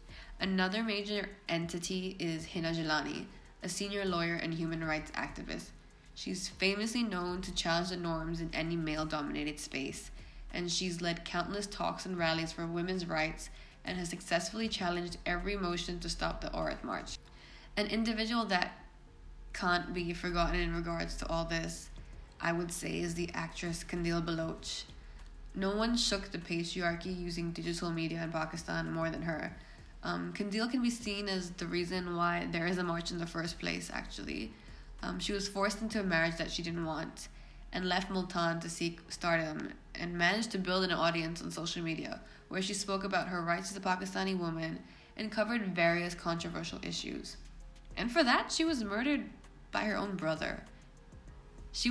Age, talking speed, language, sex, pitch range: 10-29, 170 wpm, English, female, 165-195 Hz